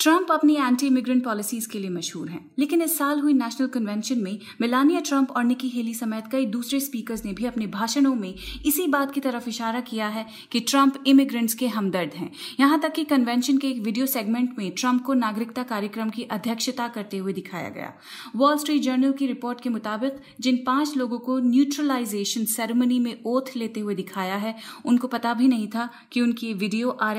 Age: 30-49